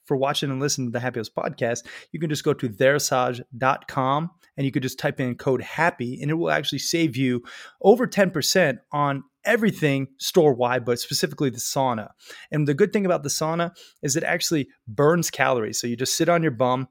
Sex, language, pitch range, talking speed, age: male, English, 120-155 Hz, 200 wpm, 30-49